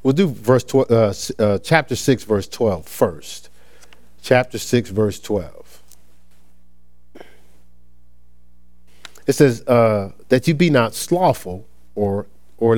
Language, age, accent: English, 50-69, American